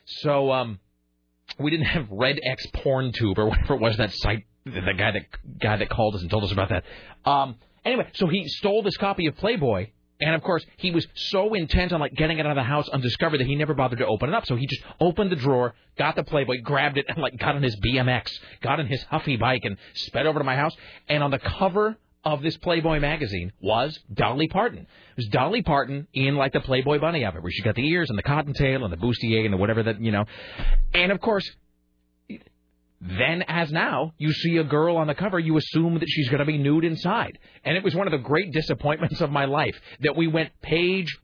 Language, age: English, 40-59